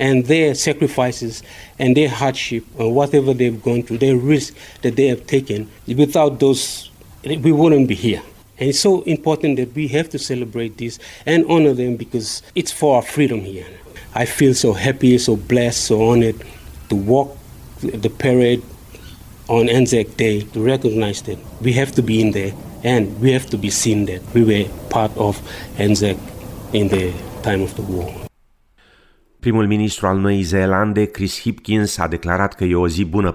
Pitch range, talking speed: 85-115 Hz, 175 wpm